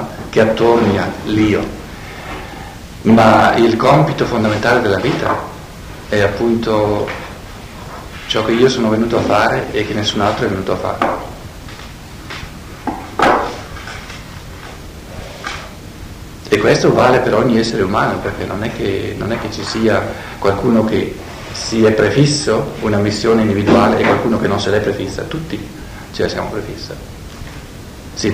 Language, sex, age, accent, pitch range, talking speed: Italian, male, 50-69, native, 100-115 Hz, 130 wpm